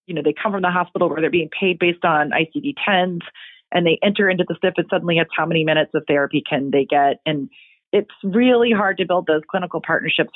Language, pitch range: English, 160-205 Hz